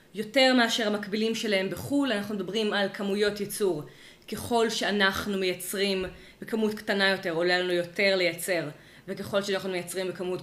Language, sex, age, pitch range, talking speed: Hebrew, female, 20-39, 190-225 Hz, 140 wpm